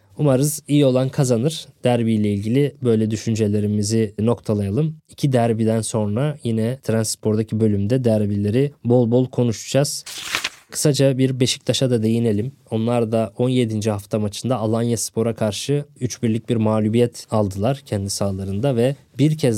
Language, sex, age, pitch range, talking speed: Turkish, male, 20-39, 110-130 Hz, 125 wpm